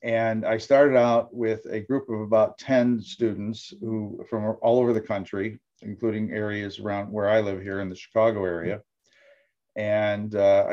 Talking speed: 170 wpm